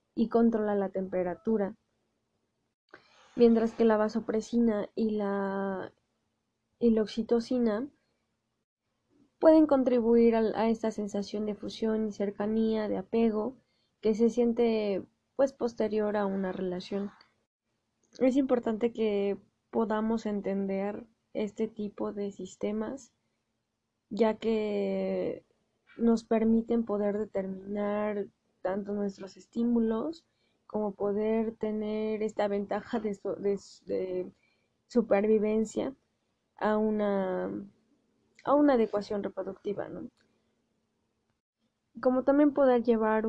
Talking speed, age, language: 95 wpm, 20-39, Spanish